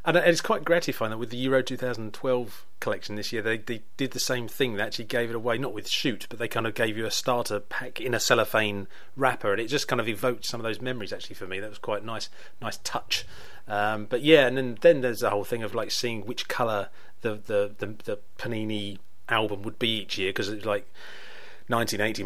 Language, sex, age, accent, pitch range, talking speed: English, male, 30-49, British, 105-125 Hz, 235 wpm